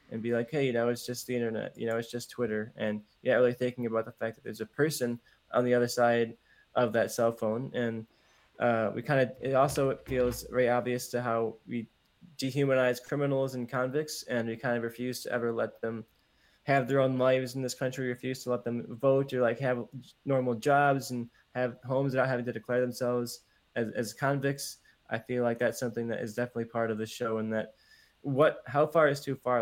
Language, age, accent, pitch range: English, 20-39, American, 115-130 Hz